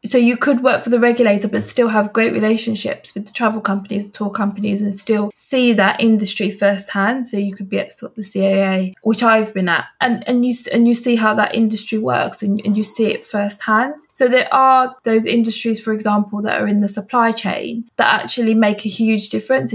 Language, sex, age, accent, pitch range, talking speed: English, female, 20-39, British, 205-235 Hz, 220 wpm